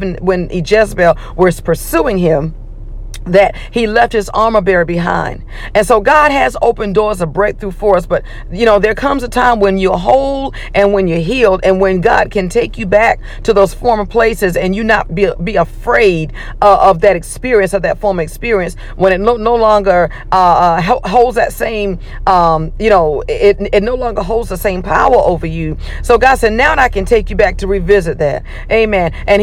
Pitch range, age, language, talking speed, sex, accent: 180-225 Hz, 50-69, English, 200 wpm, female, American